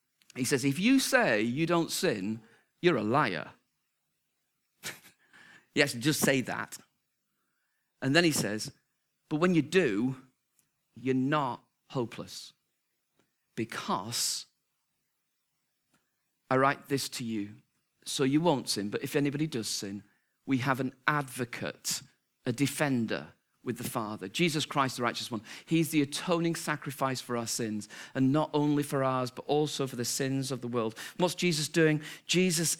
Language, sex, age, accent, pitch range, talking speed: English, male, 40-59, British, 120-150 Hz, 145 wpm